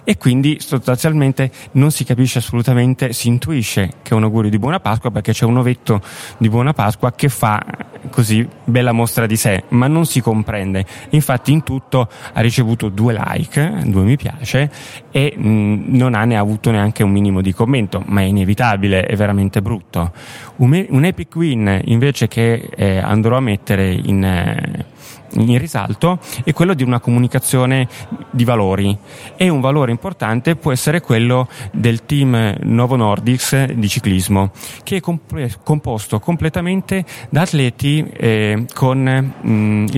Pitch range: 110-140 Hz